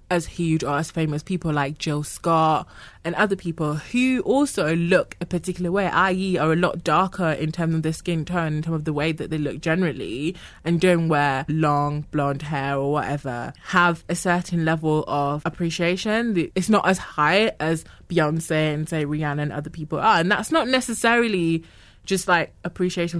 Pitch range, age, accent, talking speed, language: 155-185 Hz, 20-39, British, 185 wpm, English